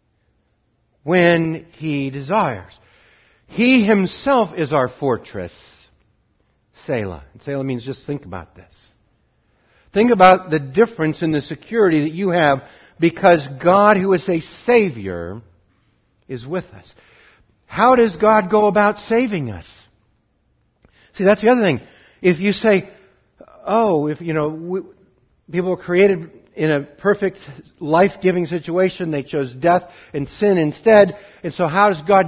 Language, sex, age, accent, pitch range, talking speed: English, male, 60-79, American, 115-185 Hz, 140 wpm